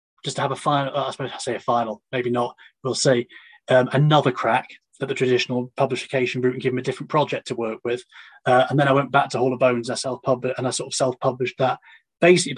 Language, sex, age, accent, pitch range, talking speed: English, male, 30-49, British, 125-155 Hz, 245 wpm